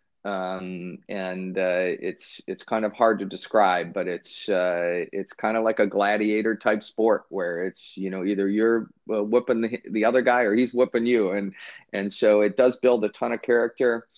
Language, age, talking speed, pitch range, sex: English, 30-49, 200 wpm, 95-110 Hz, male